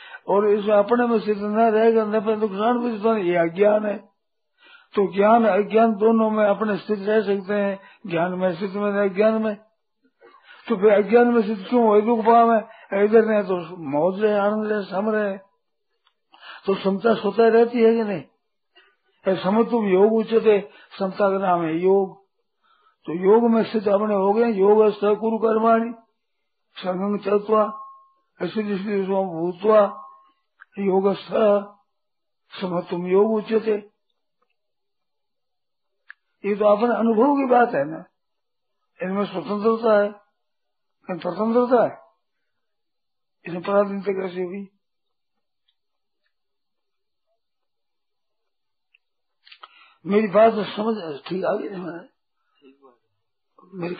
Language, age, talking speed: Hindi, 50-69, 100 wpm